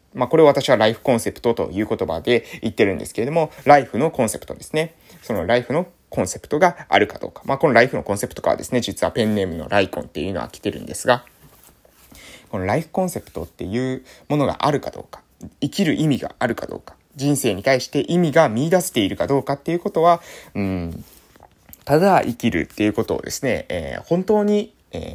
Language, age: Japanese, 20-39